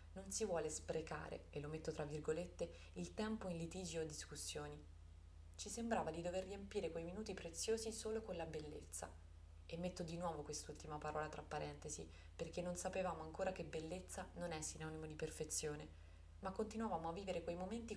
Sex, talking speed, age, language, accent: female, 175 wpm, 20-39, Italian, native